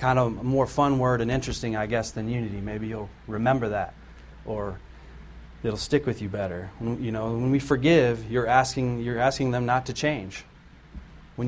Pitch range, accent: 105-130 Hz, American